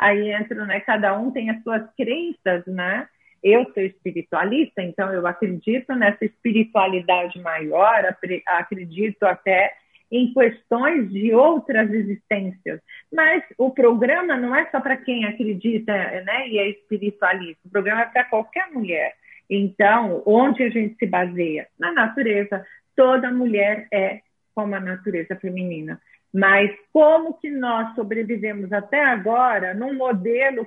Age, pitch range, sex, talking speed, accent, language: 40-59, 190-245 Hz, female, 135 wpm, Brazilian, Portuguese